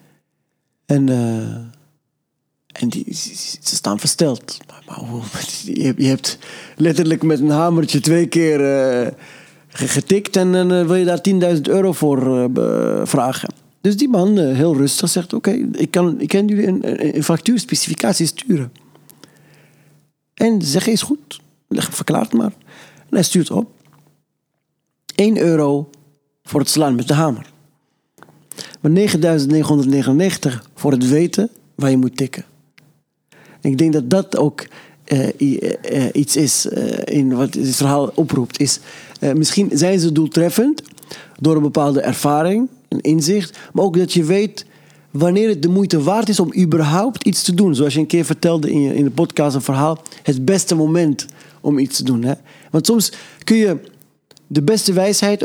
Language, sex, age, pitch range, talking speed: Dutch, male, 40-59, 145-190 Hz, 155 wpm